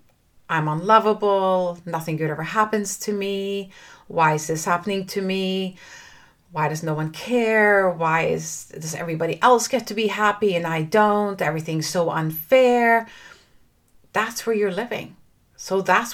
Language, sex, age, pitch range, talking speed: English, female, 40-59, 165-225 Hz, 145 wpm